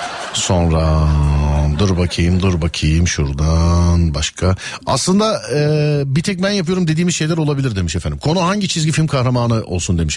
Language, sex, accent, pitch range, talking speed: Turkish, male, native, 110-165 Hz, 150 wpm